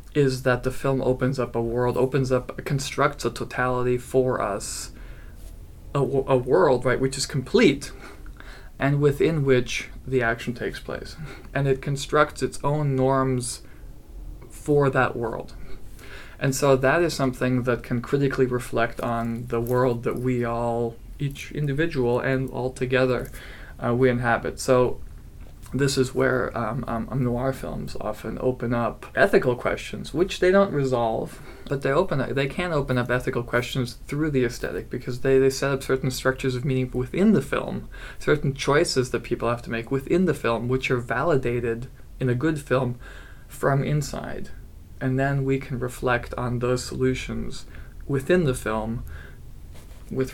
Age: 20-39